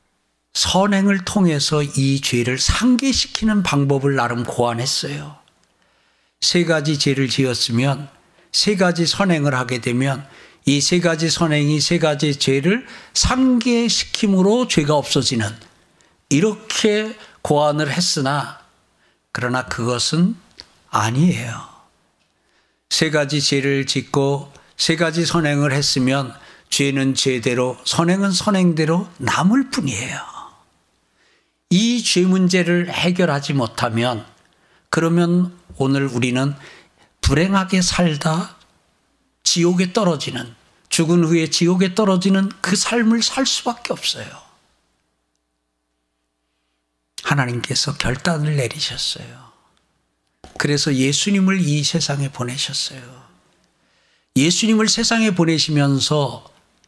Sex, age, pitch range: male, 60-79, 125-180 Hz